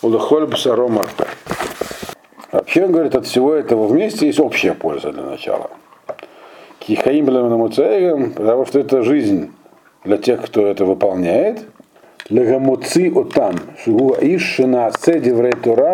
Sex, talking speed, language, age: male, 80 wpm, Russian, 50-69